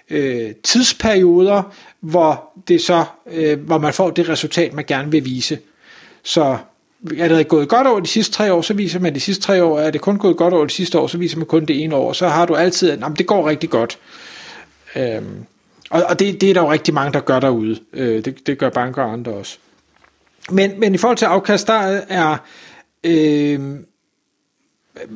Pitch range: 150-185 Hz